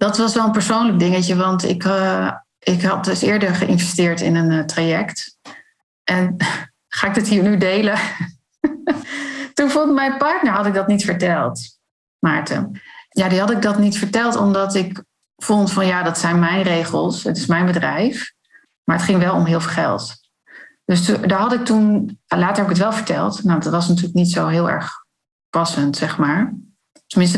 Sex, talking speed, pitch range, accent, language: female, 190 wpm, 170-215 Hz, Dutch, Dutch